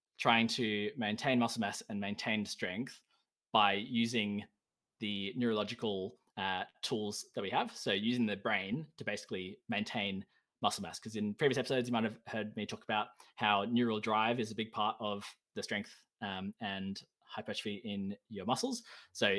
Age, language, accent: 20-39, English, Australian